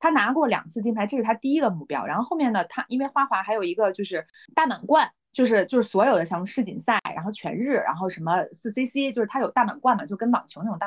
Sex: female